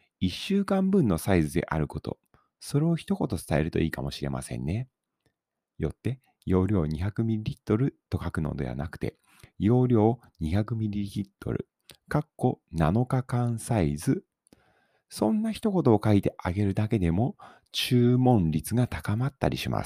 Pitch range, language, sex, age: 85-120 Hz, Japanese, male, 40-59